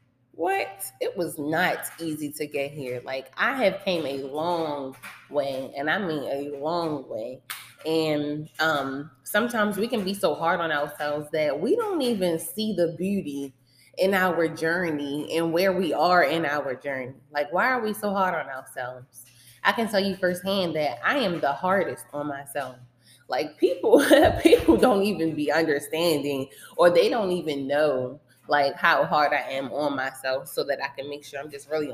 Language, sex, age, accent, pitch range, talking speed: English, female, 20-39, American, 145-185 Hz, 180 wpm